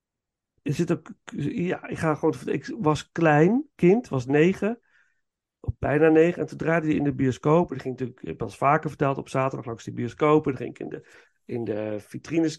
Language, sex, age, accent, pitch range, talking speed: Dutch, male, 40-59, Dutch, 130-165 Hz, 215 wpm